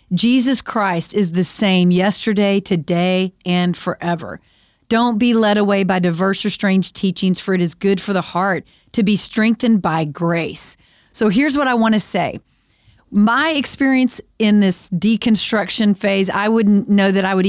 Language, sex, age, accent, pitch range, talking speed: English, female, 40-59, American, 185-225 Hz, 170 wpm